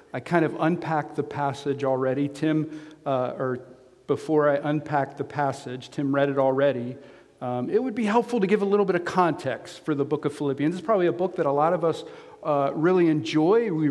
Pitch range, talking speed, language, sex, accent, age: 150-185 Hz, 210 wpm, English, male, American, 50-69